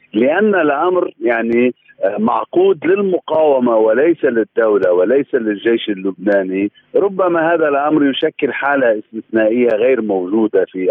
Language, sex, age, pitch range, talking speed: Arabic, male, 50-69, 110-155 Hz, 105 wpm